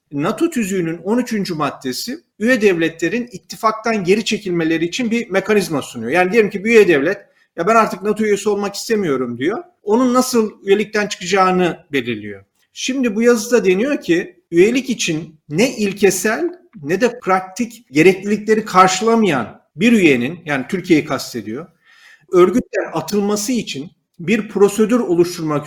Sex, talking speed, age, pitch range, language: male, 135 wpm, 40-59, 160-220 Hz, Turkish